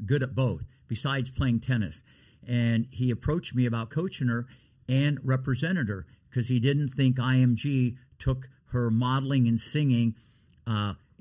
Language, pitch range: English, 120-135 Hz